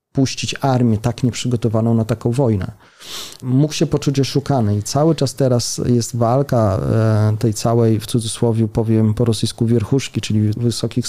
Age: 40-59